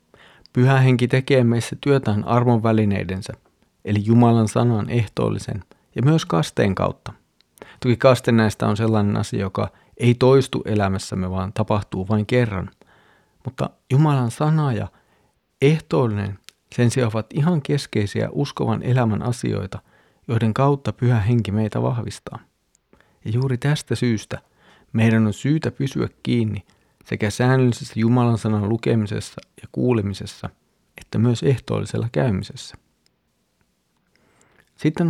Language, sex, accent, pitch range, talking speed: Finnish, male, native, 105-130 Hz, 115 wpm